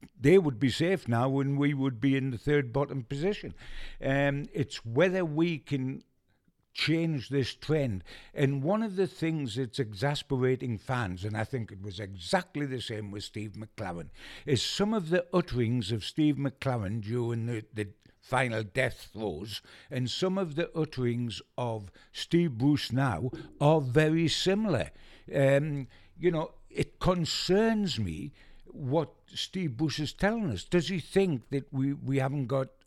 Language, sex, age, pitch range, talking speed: English, male, 60-79, 120-160 Hz, 160 wpm